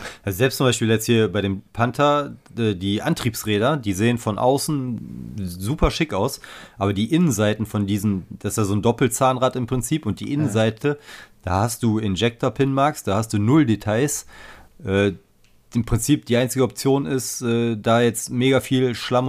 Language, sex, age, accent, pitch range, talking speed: German, male, 30-49, German, 105-125 Hz, 170 wpm